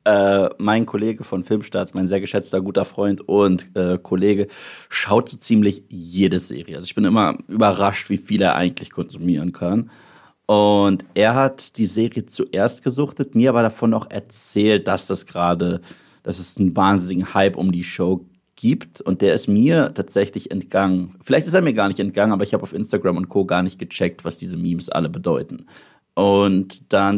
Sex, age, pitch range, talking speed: male, 30-49, 95-120 Hz, 180 wpm